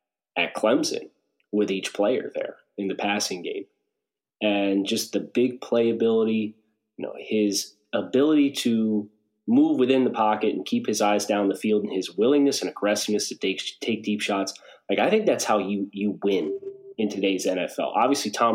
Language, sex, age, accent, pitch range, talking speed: English, male, 30-49, American, 100-120 Hz, 175 wpm